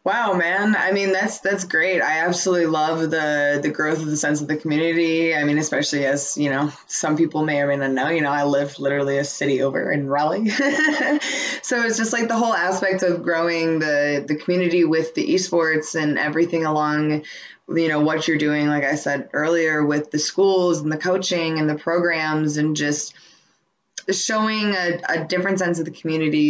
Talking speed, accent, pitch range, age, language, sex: 200 wpm, American, 150-170 Hz, 20-39, English, female